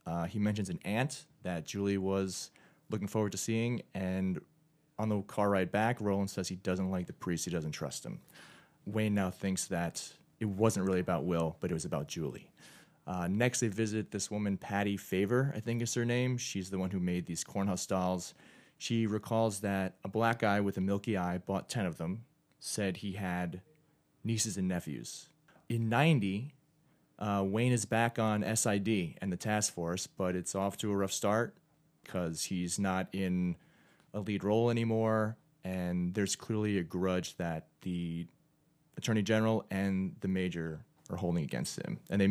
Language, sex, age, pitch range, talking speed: English, male, 30-49, 95-115 Hz, 185 wpm